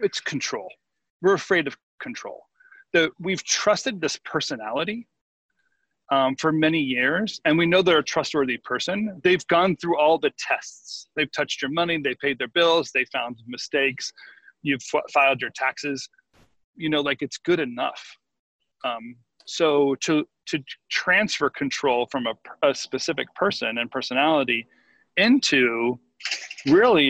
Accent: American